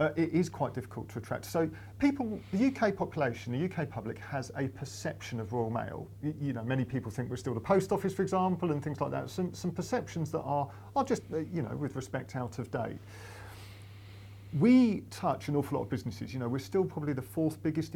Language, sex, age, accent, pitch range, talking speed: English, male, 40-59, British, 115-150 Hz, 225 wpm